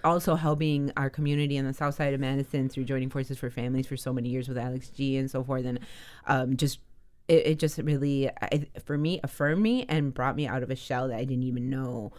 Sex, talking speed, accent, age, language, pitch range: female, 235 wpm, American, 30-49, English, 130-150 Hz